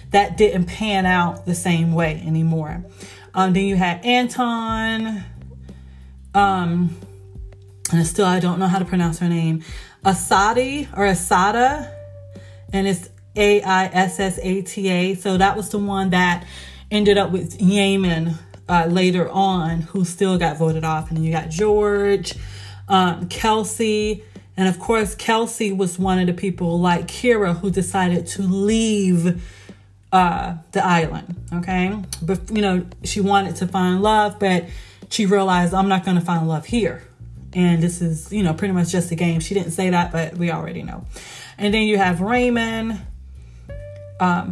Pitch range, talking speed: 165-200 Hz, 155 wpm